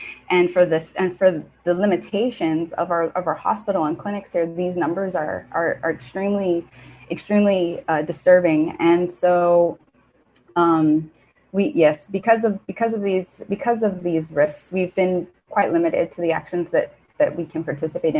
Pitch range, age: 165-180 Hz, 20-39